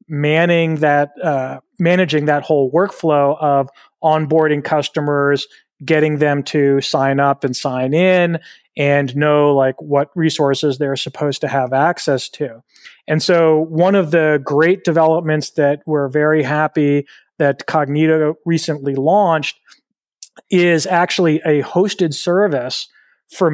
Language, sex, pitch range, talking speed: English, male, 145-165 Hz, 125 wpm